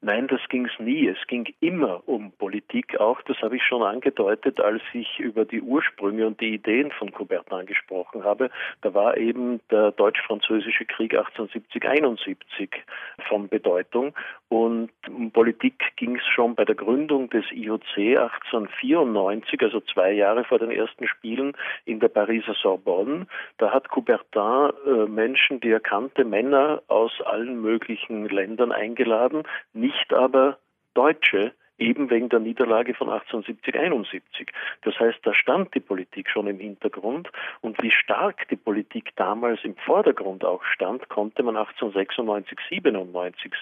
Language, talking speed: German, 145 wpm